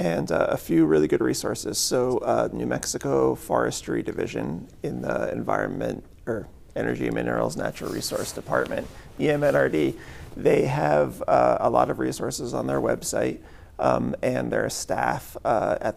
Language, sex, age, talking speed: English, male, 30-49, 145 wpm